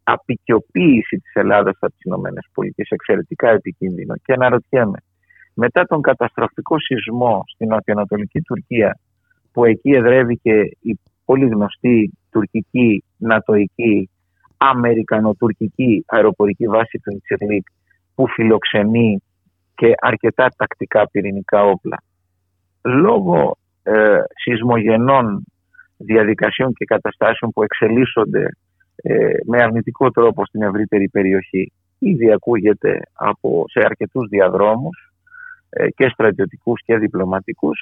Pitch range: 100-125 Hz